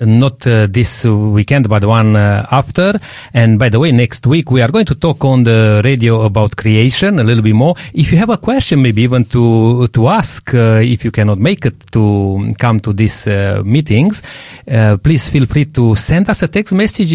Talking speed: 210 wpm